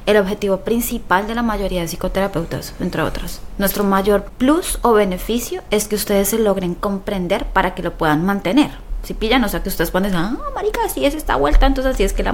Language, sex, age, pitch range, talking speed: Spanish, female, 20-39, 180-220 Hz, 215 wpm